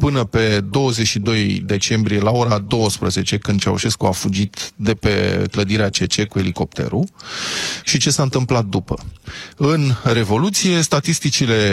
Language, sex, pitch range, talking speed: Romanian, male, 105-135 Hz, 130 wpm